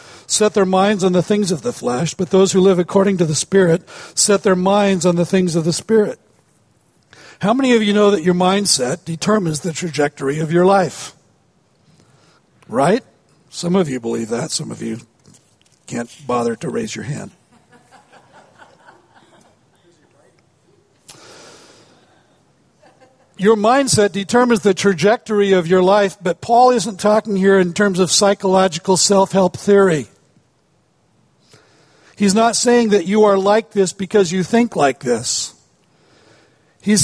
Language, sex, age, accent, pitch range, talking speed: English, male, 60-79, American, 175-210 Hz, 145 wpm